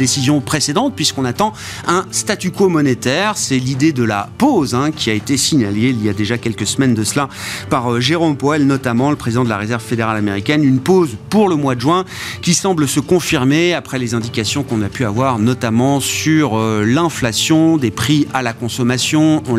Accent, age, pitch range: French, 30-49, 110-150 Hz